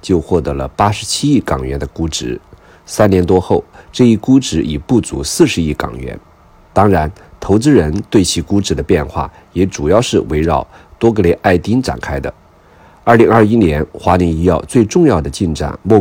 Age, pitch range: 50-69, 80-105 Hz